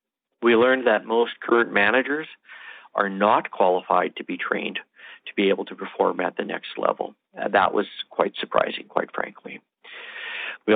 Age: 50-69